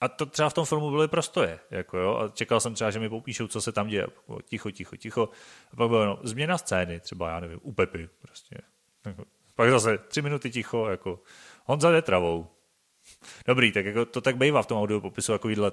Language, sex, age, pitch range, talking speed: Czech, male, 30-49, 100-120 Hz, 215 wpm